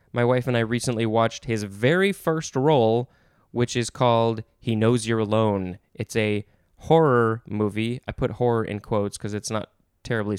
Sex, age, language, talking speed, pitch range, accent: male, 20-39, English, 175 wpm, 110-145 Hz, American